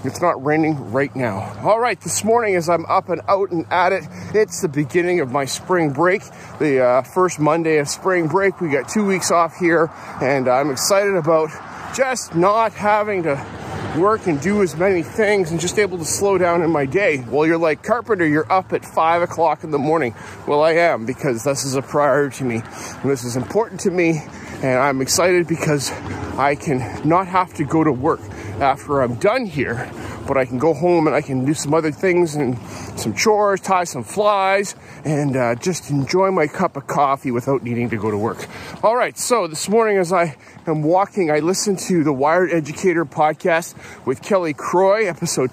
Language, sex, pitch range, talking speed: English, male, 135-185 Hz, 205 wpm